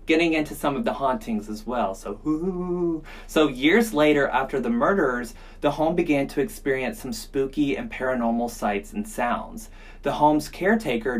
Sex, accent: male, American